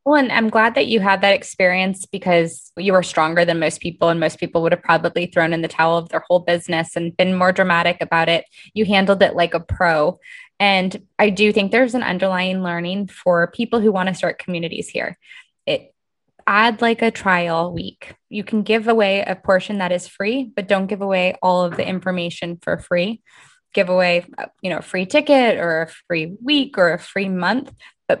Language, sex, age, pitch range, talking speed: English, female, 20-39, 180-220 Hz, 210 wpm